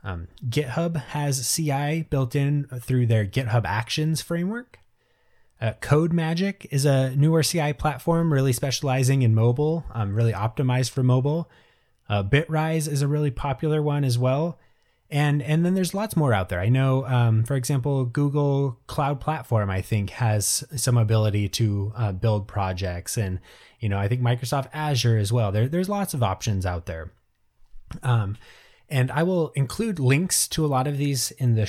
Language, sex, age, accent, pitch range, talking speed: English, male, 20-39, American, 110-150 Hz, 170 wpm